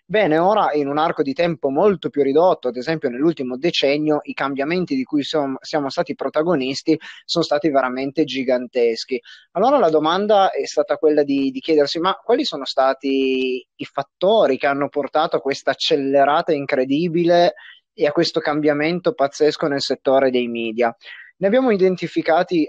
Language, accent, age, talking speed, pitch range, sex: Italian, native, 30-49, 160 wpm, 135-170 Hz, male